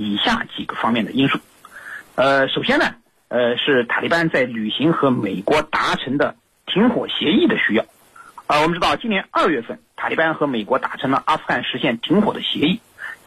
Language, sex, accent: Chinese, male, native